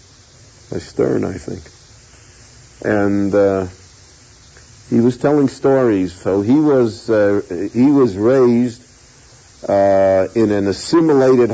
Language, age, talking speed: English, 50-69, 110 wpm